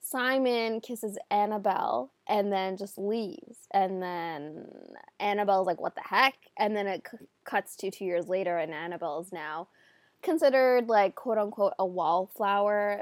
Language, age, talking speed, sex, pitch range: English, 20-39, 150 wpm, female, 185-225 Hz